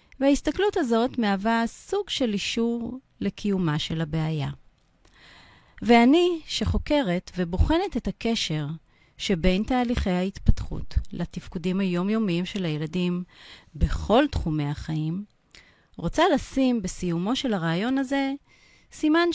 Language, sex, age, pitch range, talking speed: Hebrew, female, 40-59, 175-255 Hz, 95 wpm